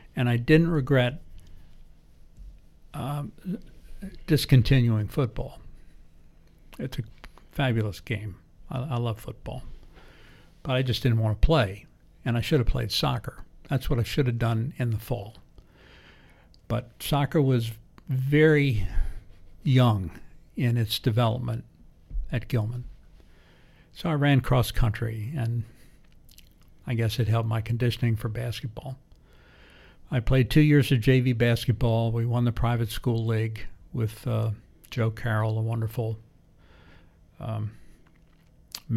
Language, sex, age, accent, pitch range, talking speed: English, male, 60-79, American, 110-125 Hz, 125 wpm